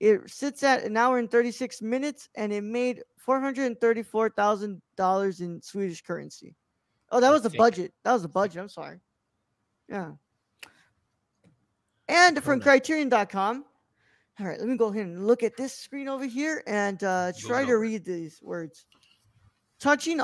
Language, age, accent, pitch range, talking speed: English, 20-39, American, 195-255 Hz, 150 wpm